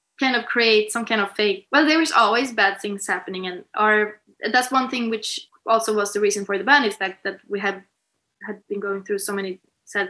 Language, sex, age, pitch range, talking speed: English, female, 20-39, 200-240 Hz, 230 wpm